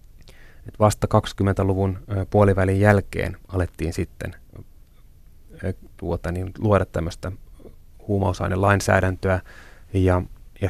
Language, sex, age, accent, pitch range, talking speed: Finnish, male, 30-49, native, 90-105 Hz, 80 wpm